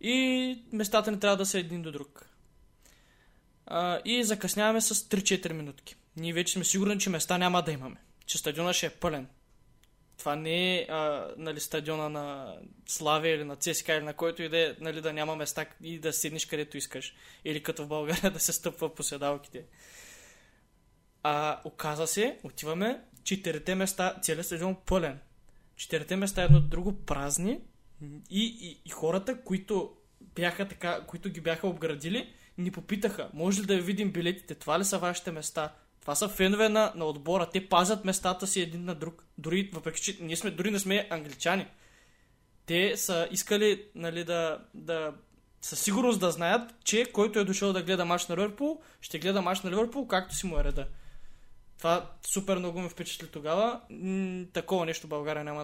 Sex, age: male, 20-39